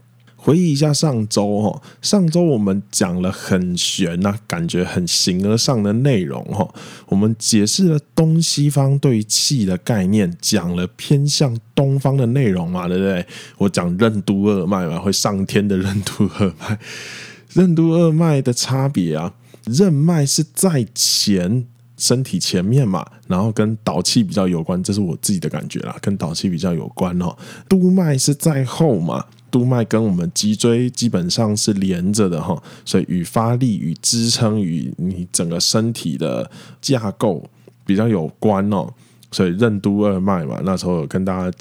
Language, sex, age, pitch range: Chinese, male, 20-39, 100-140 Hz